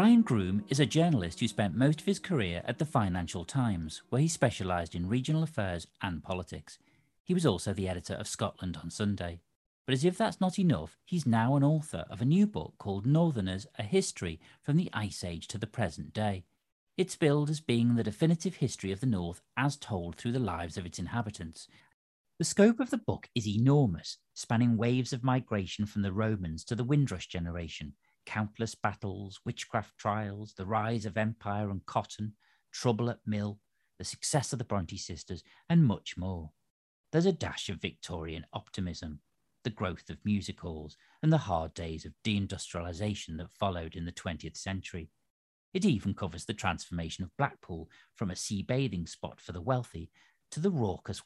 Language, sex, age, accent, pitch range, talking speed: English, male, 40-59, British, 90-130 Hz, 180 wpm